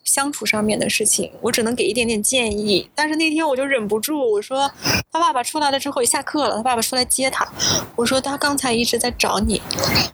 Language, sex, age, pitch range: Chinese, female, 20-39, 220-280 Hz